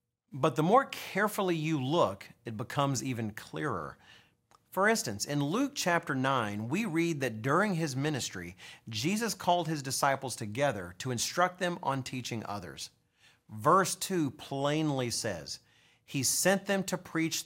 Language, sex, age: English, male, 40-59